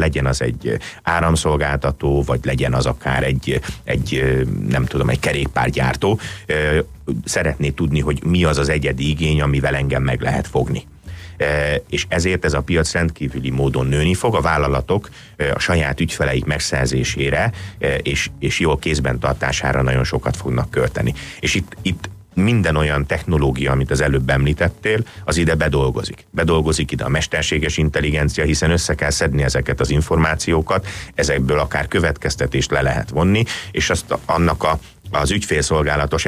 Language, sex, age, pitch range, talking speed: Hungarian, male, 30-49, 70-85 Hz, 145 wpm